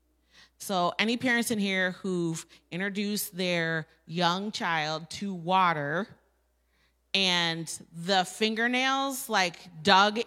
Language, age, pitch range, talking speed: English, 30-49, 175-250 Hz, 100 wpm